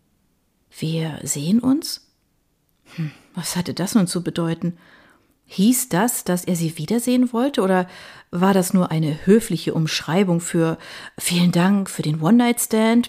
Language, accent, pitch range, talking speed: German, German, 165-230 Hz, 135 wpm